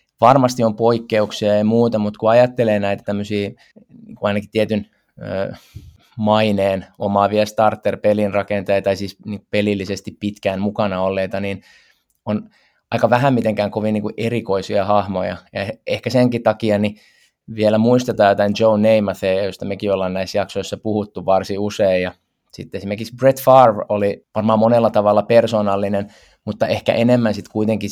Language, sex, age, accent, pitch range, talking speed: Finnish, male, 20-39, native, 100-115 Hz, 135 wpm